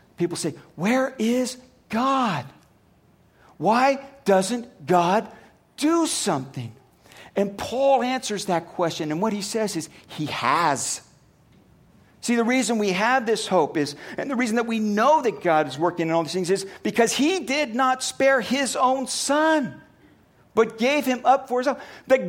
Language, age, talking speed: English, 50-69, 165 wpm